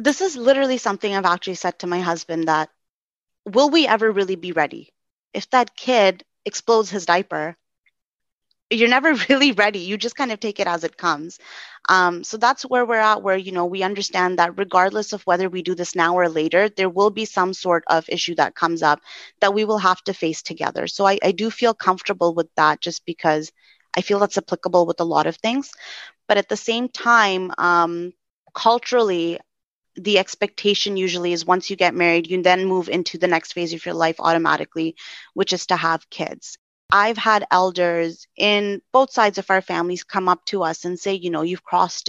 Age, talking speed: 20-39, 205 wpm